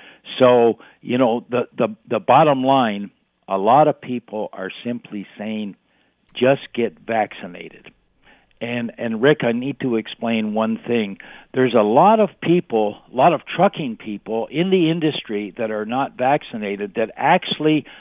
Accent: American